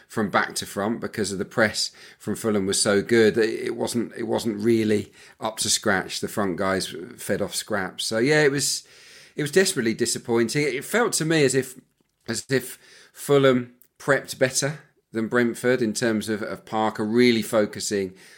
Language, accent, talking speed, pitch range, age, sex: English, British, 185 wpm, 100-125 Hz, 40-59, male